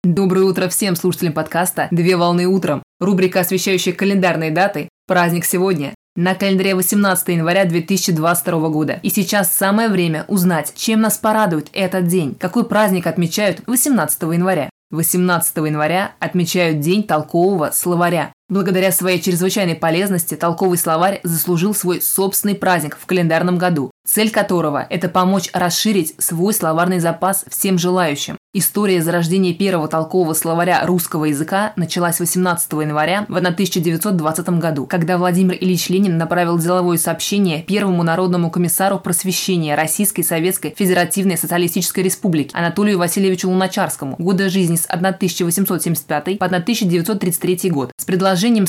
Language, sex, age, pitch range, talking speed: Russian, female, 20-39, 170-195 Hz, 130 wpm